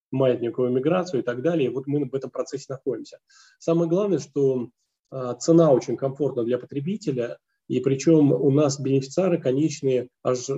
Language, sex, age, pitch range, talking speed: Russian, male, 20-39, 125-155 Hz, 145 wpm